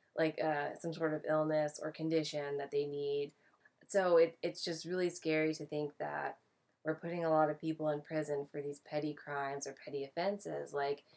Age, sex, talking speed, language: 20-39, female, 190 wpm, English